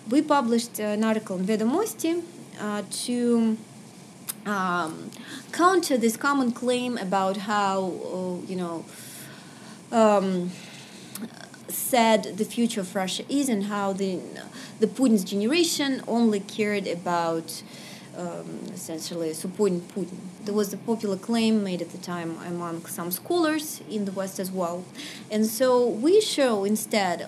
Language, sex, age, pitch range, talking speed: English, female, 20-39, 190-240 Hz, 130 wpm